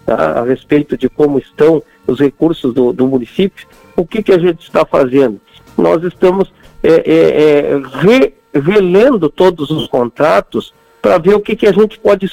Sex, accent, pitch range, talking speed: male, Brazilian, 150-195 Hz, 170 wpm